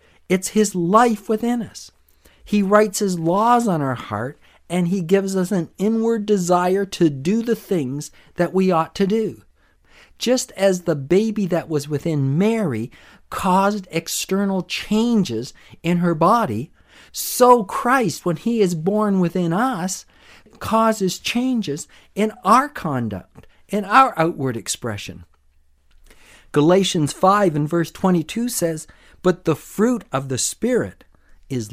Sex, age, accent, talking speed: male, 50-69, American, 135 wpm